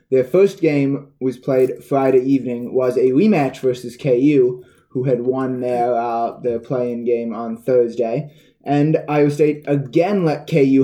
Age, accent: 20-39, American